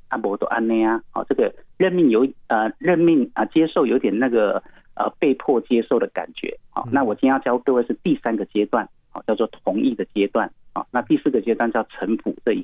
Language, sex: Chinese, male